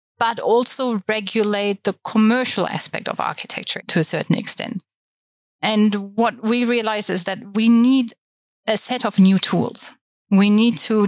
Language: German